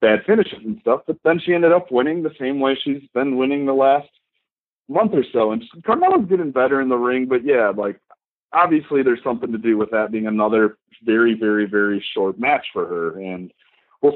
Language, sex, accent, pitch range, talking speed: English, male, American, 105-130 Hz, 210 wpm